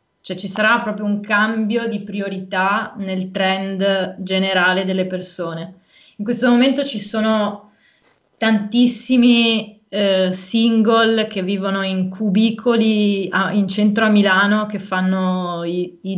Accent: native